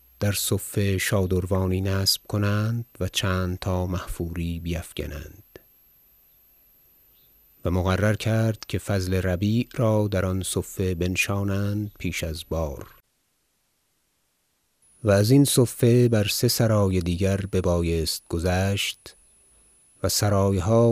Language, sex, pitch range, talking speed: Persian, male, 90-105 Hz, 105 wpm